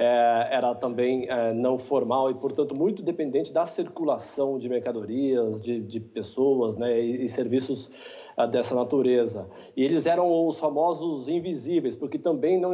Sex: male